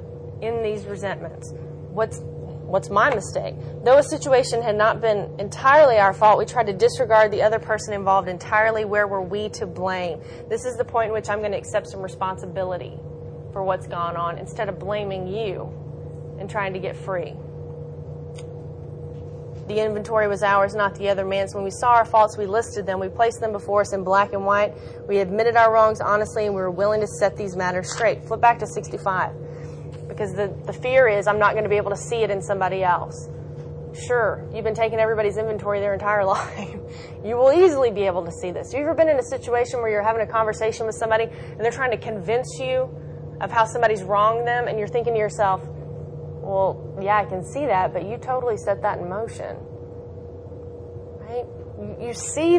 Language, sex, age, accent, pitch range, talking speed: English, female, 30-49, American, 185-225 Hz, 205 wpm